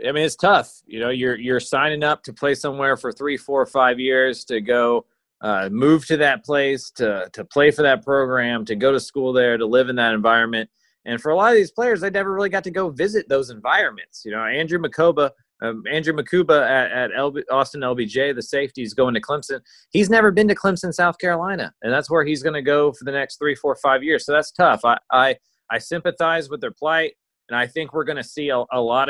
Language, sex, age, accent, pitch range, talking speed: English, male, 30-49, American, 120-155 Hz, 235 wpm